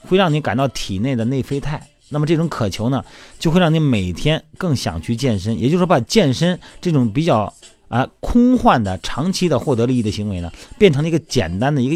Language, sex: Chinese, male